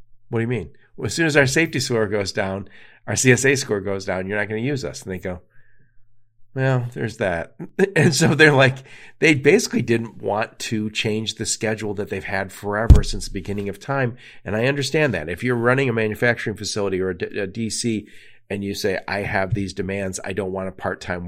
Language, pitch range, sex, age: English, 95-120 Hz, male, 40-59